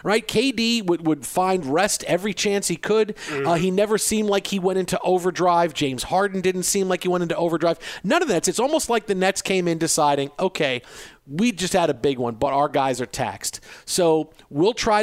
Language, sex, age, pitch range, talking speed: English, male, 40-59, 150-190 Hz, 215 wpm